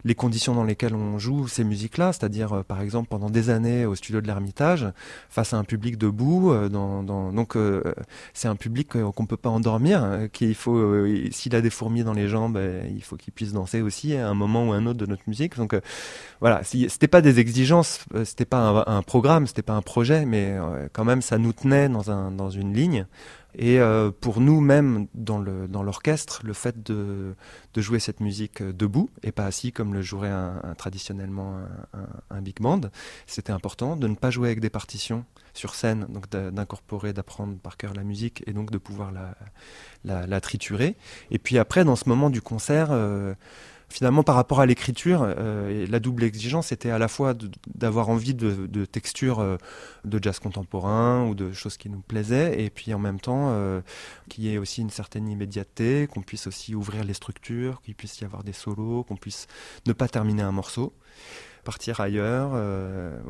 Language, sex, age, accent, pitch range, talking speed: French, male, 20-39, French, 100-120 Hz, 210 wpm